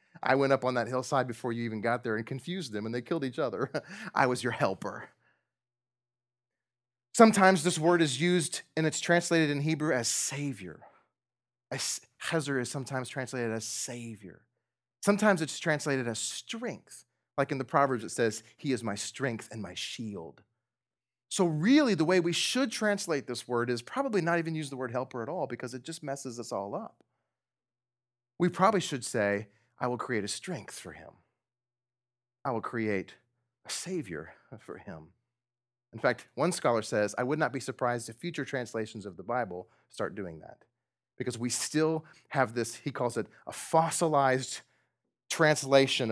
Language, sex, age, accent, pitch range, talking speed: English, male, 30-49, American, 120-150 Hz, 175 wpm